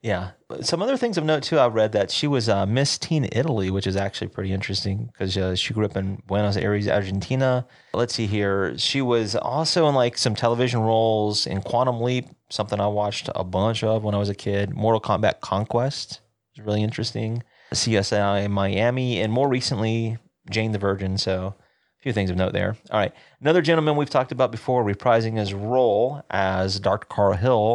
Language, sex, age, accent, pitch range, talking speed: English, male, 30-49, American, 100-120 Hz, 200 wpm